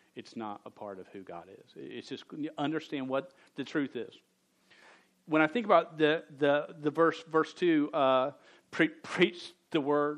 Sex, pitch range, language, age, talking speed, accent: male, 125-160 Hz, English, 40-59, 185 wpm, American